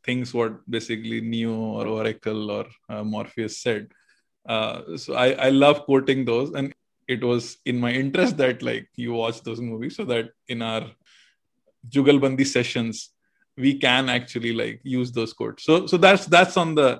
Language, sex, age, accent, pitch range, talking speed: English, male, 20-39, Indian, 115-145 Hz, 170 wpm